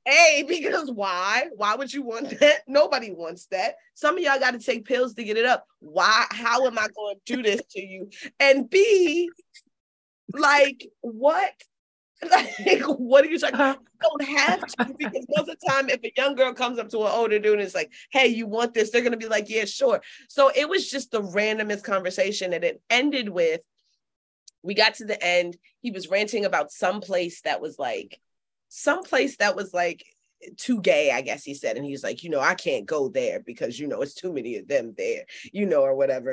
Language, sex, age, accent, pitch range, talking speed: English, female, 30-49, American, 205-285 Hz, 220 wpm